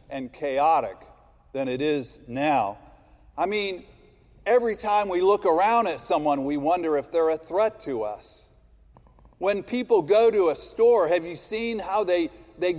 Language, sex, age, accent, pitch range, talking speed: English, male, 50-69, American, 150-245 Hz, 165 wpm